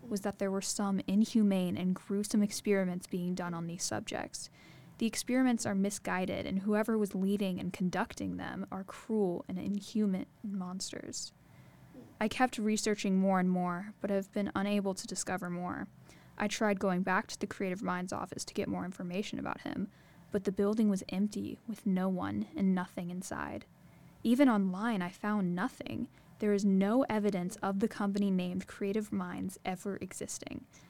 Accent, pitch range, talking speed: American, 185-215 Hz, 165 wpm